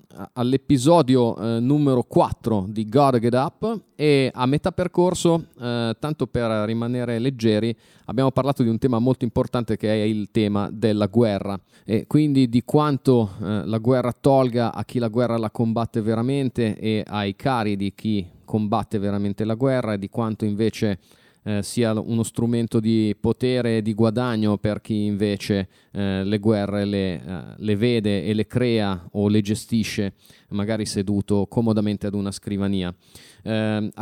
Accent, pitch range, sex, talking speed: native, 105-125 Hz, male, 150 wpm